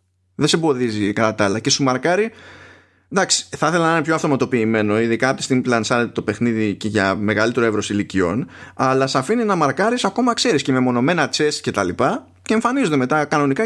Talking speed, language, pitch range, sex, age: 190 wpm, Greek, 95-150 Hz, male, 20-39